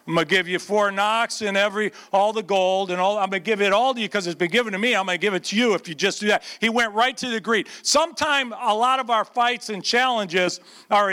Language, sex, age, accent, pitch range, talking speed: English, male, 50-69, American, 210-275 Hz, 280 wpm